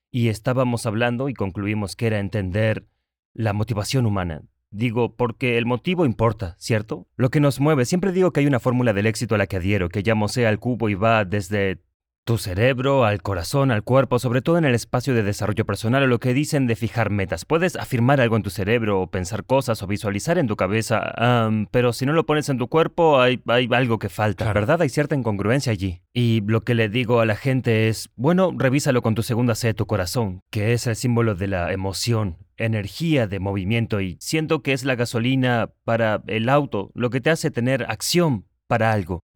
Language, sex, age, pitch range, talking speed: Spanish, male, 30-49, 105-130 Hz, 210 wpm